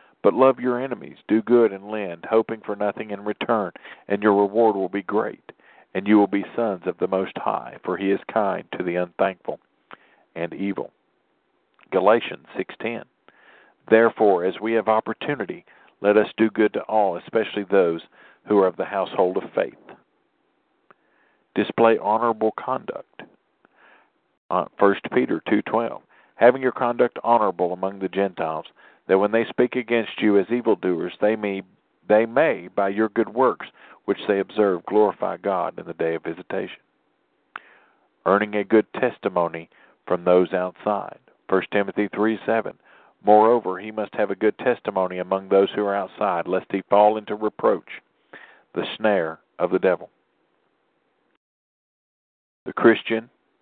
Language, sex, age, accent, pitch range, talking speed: English, male, 50-69, American, 95-115 Hz, 150 wpm